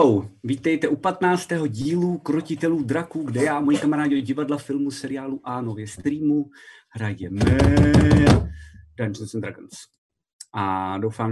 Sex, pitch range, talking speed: male, 105-140 Hz, 125 wpm